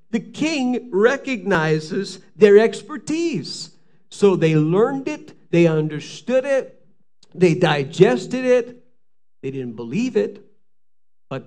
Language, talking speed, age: English, 105 wpm, 50-69